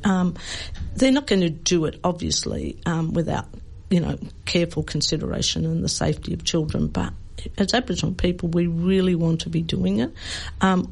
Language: English